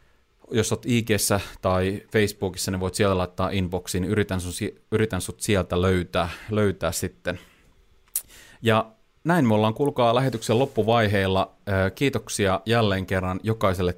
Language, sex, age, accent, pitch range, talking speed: Finnish, male, 30-49, native, 90-110 Hz, 125 wpm